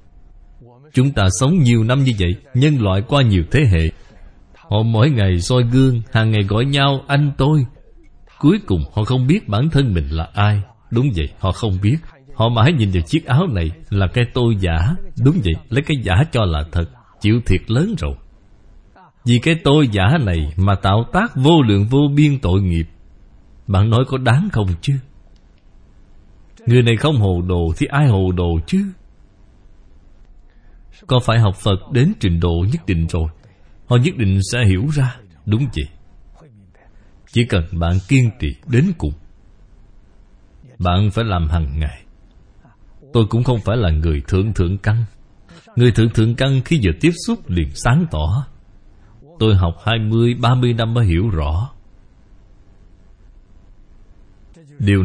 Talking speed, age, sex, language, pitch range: 165 wpm, 20-39, male, Vietnamese, 90-125 Hz